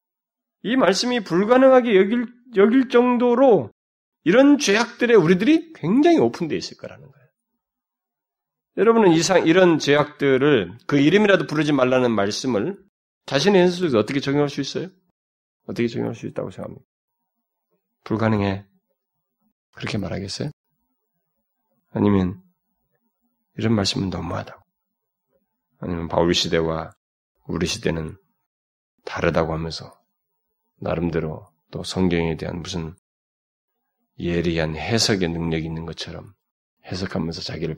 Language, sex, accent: Korean, male, native